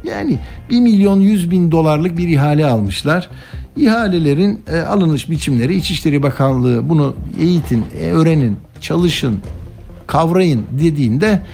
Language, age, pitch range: Turkish, 60-79, 120-180 Hz